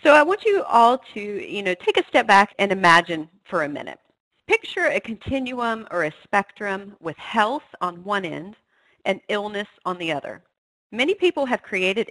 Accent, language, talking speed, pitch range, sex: American, English, 175 wpm, 175-235 Hz, female